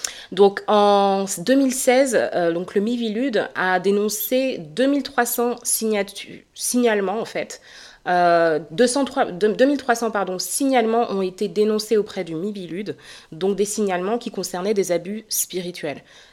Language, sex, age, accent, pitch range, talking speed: French, female, 20-39, French, 180-225 Hz, 125 wpm